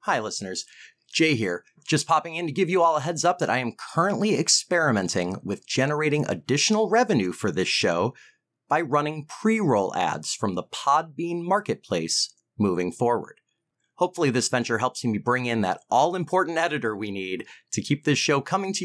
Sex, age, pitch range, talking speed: male, 30-49, 115-185 Hz, 170 wpm